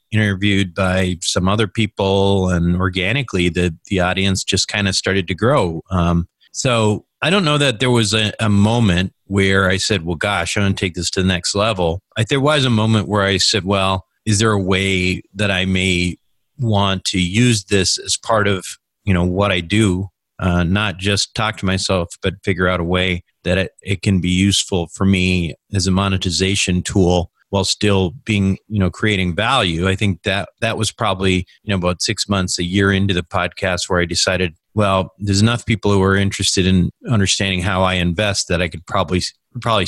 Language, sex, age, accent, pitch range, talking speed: English, male, 30-49, American, 90-105 Hz, 205 wpm